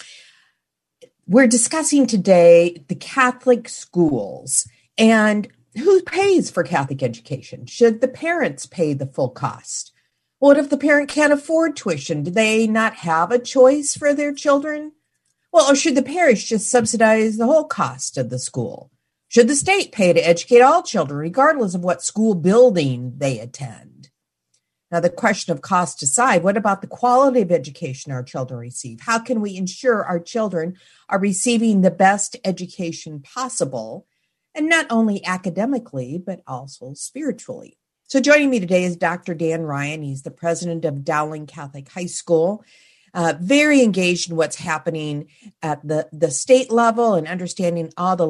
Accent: American